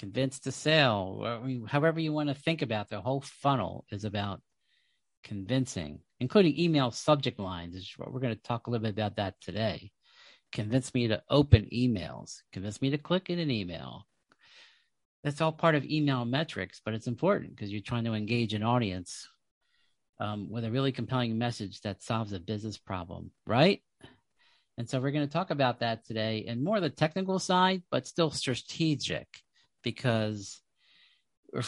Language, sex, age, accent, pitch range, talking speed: English, male, 50-69, American, 105-135 Hz, 180 wpm